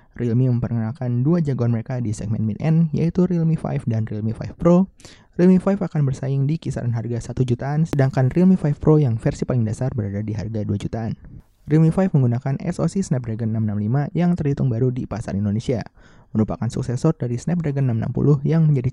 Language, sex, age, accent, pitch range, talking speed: Indonesian, male, 20-39, native, 115-155 Hz, 180 wpm